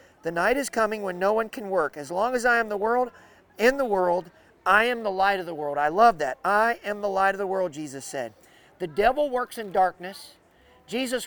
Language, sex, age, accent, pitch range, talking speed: English, male, 40-59, American, 185-240 Hz, 235 wpm